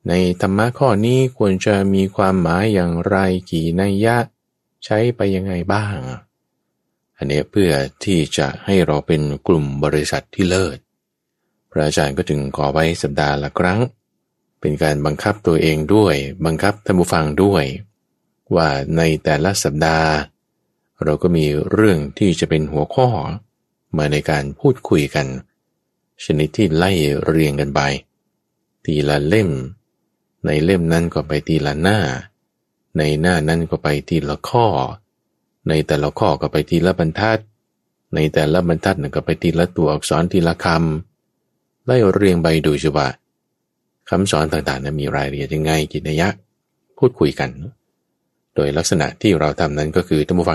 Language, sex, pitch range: Thai, male, 75-95 Hz